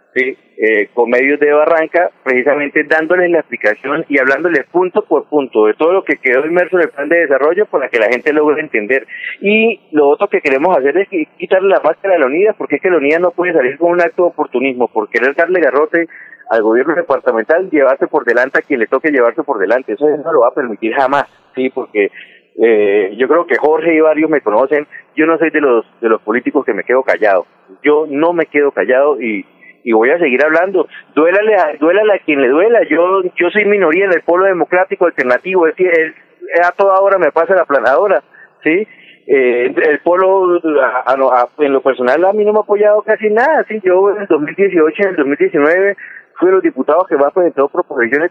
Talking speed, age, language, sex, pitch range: 220 wpm, 30-49, Spanish, male, 150-210 Hz